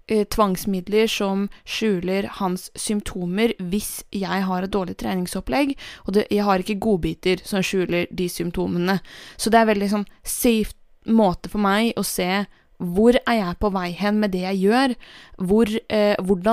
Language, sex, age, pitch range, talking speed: English, female, 20-39, 195-230 Hz, 165 wpm